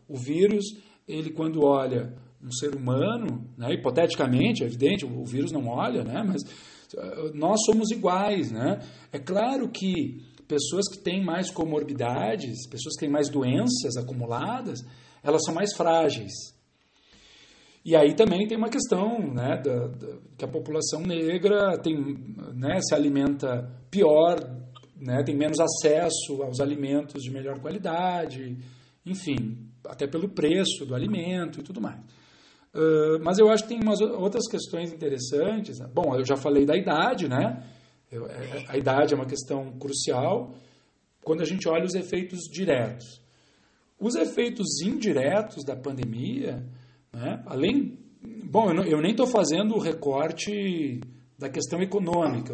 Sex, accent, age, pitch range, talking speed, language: male, Brazilian, 50-69, 135-185 Hz, 140 wpm, Portuguese